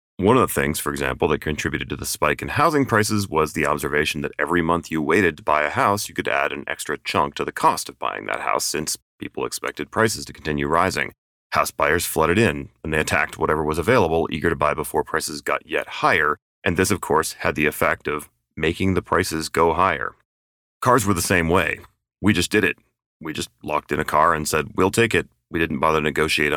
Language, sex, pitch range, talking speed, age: English, male, 75-100 Hz, 230 wpm, 30-49